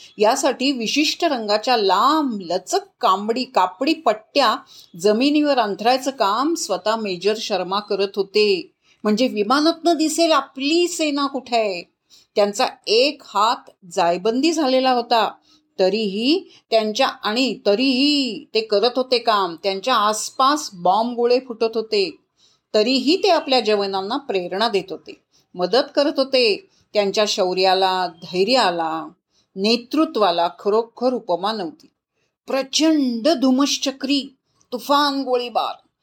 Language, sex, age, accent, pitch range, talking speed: Marathi, female, 40-59, native, 205-285 Hz, 105 wpm